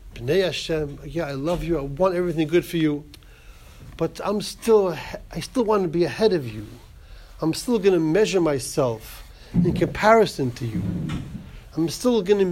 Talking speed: 180 wpm